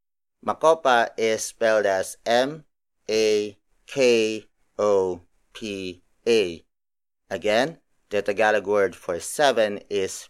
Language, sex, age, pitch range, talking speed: English, male, 30-49, 100-130 Hz, 70 wpm